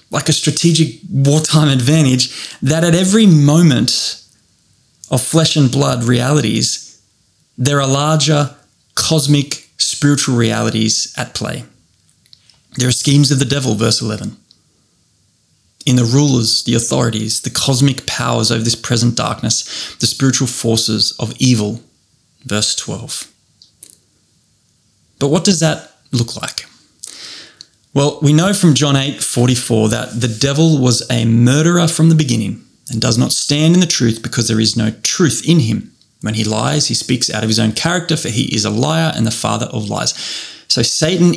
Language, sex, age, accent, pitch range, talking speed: English, male, 20-39, Australian, 115-150 Hz, 155 wpm